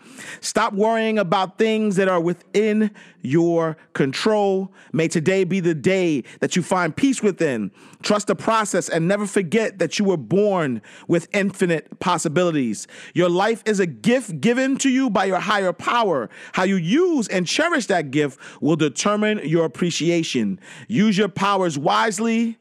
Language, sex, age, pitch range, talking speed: English, male, 40-59, 175-220 Hz, 155 wpm